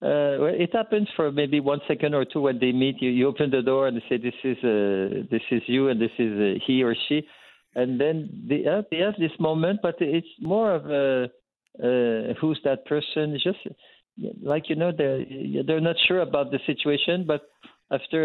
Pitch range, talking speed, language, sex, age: 120-145 Hz, 215 wpm, English, male, 50-69